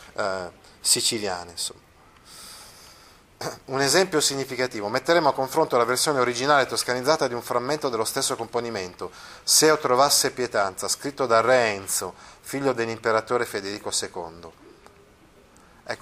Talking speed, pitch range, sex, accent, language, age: 120 wpm, 110-150 Hz, male, native, Italian, 30-49